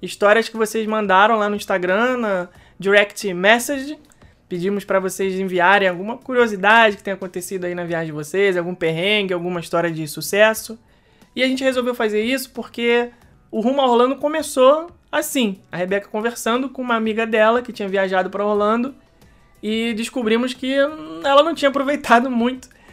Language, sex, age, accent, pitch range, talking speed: Portuguese, male, 20-39, Brazilian, 195-240 Hz, 165 wpm